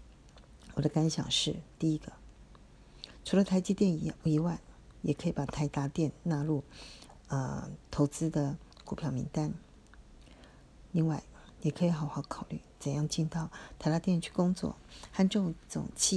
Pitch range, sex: 150-185 Hz, female